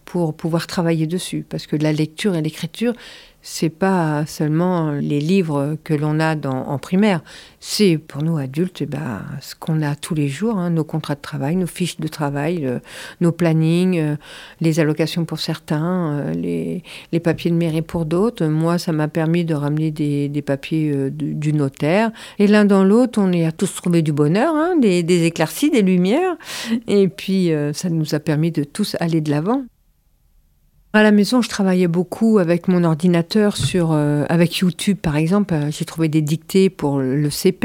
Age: 50-69